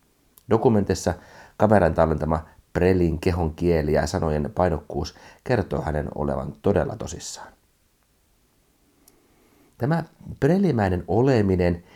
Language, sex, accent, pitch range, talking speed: Finnish, male, native, 75-100 Hz, 85 wpm